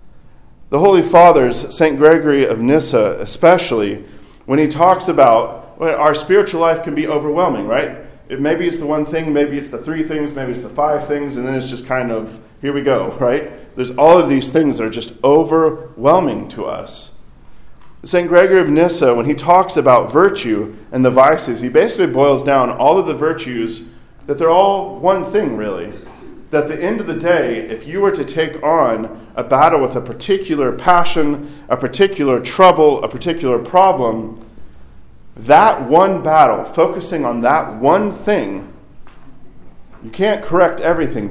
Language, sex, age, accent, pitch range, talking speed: English, male, 40-59, American, 125-175 Hz, 170 wpm